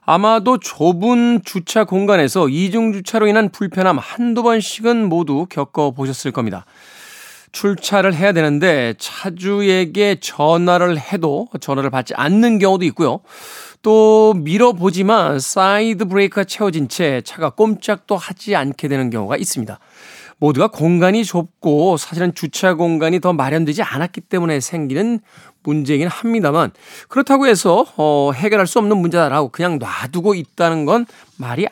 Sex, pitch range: male, 150-215 Hz